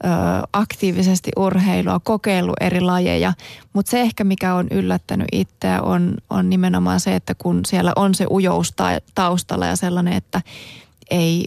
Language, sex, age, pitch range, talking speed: Finnish, female, 30-49, 170-195 Hz, 145 wpm